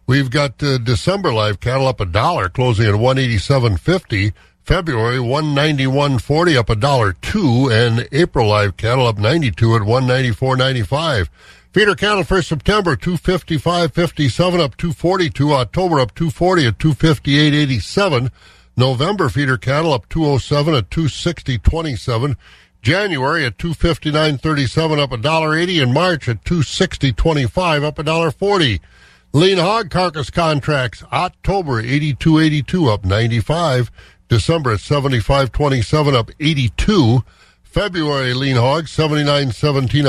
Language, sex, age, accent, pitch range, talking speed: English, male, 60-79, American, 120-160 Hz, 165 wpm